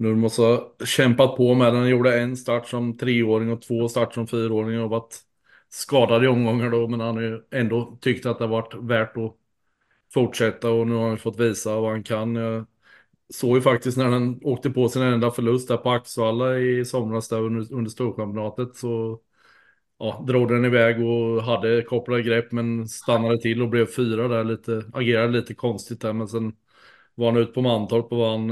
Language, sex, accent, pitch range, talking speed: Swedish, male, Norwegian, 110-120 Hz, 200 wpm